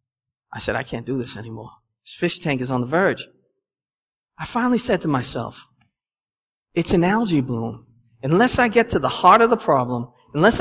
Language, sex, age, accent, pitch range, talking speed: English, male, 40-59, American, 205-275 Hz, 185 wpm